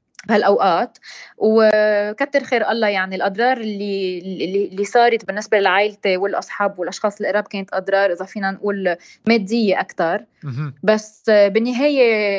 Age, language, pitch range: 20-39, Arabic, 195-225 Hz